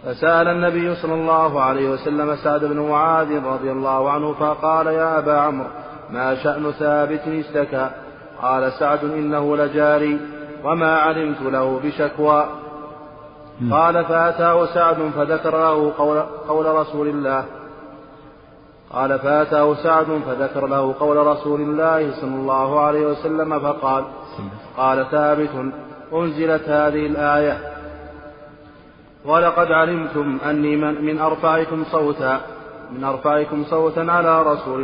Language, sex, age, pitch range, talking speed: Arabic, male, 30-49, 140-155 Hz, 115 wpm